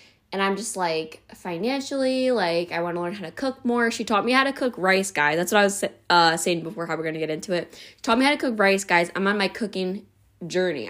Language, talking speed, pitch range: English, 270 wpm, 165-200 Hz